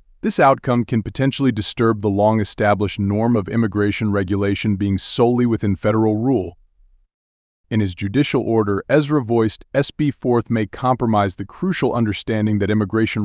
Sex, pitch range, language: male, 100-125 Hz, English